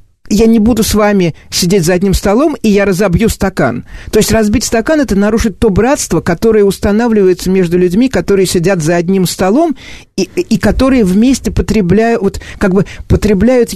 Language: Russian